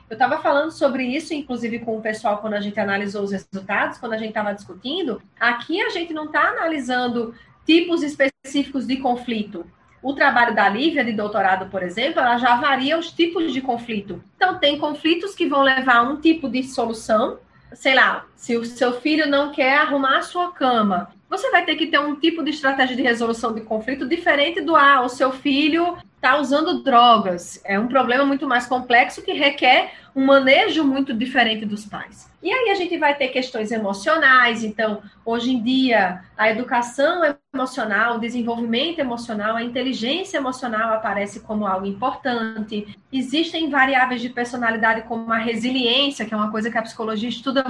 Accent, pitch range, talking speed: Brazilian, 225-290 Hz, 180 wpm